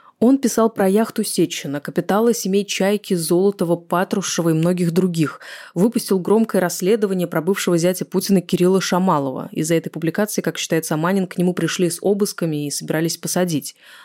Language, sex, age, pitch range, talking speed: Russian, female, 20-39, 160-200 Hz, 155 wpm